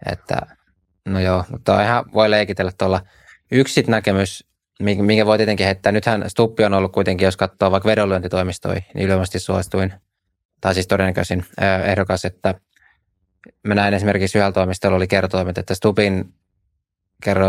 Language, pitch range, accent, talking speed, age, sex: Finnish, 95-105 Hz, native, 135 wpm, 20-39, male